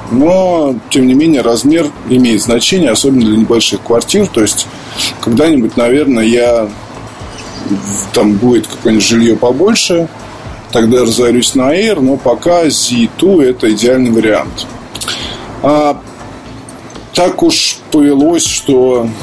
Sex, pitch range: male, 115-150 Hz